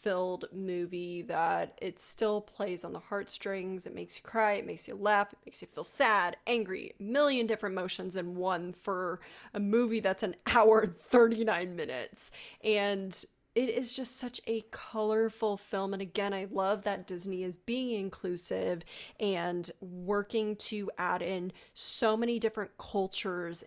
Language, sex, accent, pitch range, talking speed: English, female, American, 185-220 Hz, 160 wpm